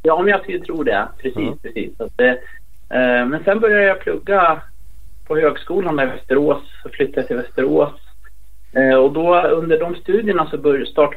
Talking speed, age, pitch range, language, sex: 150 wpm, 30-49, 130-165 Hz, Swedish, male